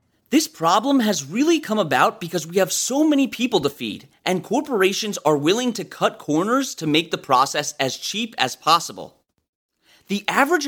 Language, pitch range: English, 160-245 Hz